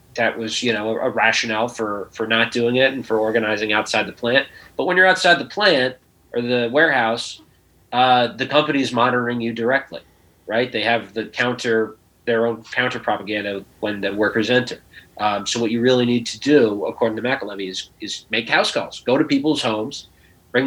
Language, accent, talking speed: English, American, 195 wpm